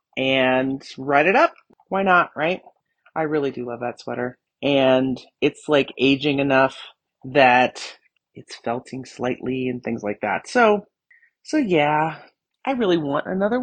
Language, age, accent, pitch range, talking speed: English, 30-49, American, 140-215 Hz, 145 wpm